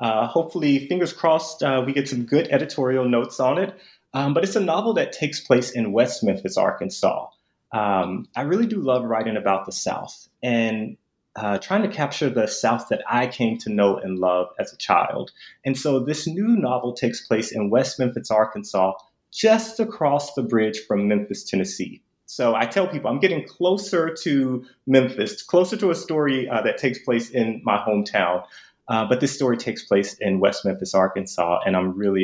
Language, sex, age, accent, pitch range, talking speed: English, male, 30-49, American, 110-145 Hz, 190 wpm